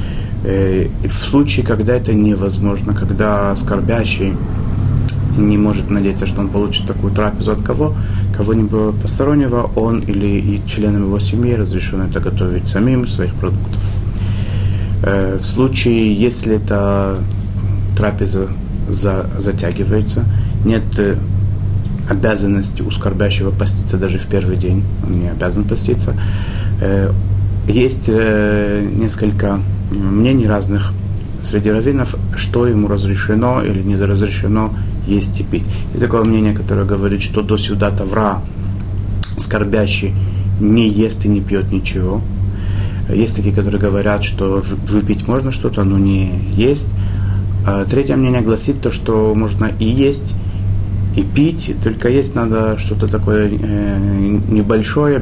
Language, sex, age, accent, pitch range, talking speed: Russian, male, 30-49, native, 100-105 Hz, 120 wpm